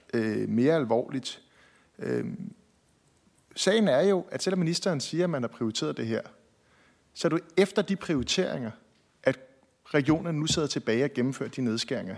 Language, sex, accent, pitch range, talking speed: Danish, male, native, 125-180 Hz, 145 wpm